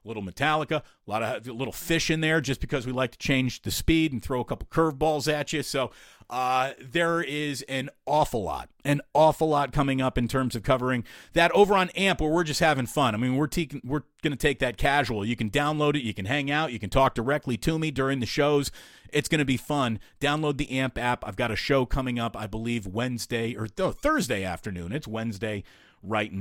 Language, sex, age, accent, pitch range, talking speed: English, male, 40-59, American, 120-155 Hz, 235 wpm